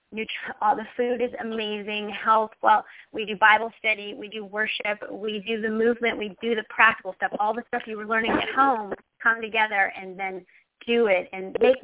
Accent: American